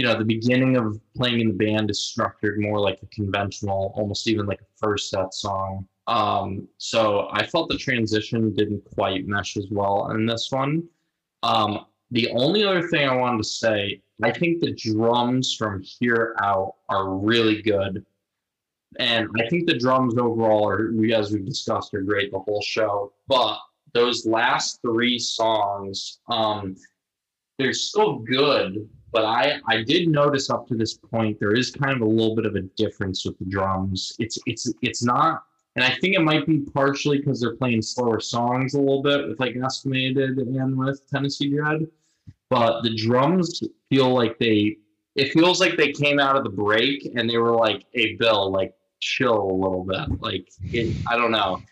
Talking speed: 185 wpm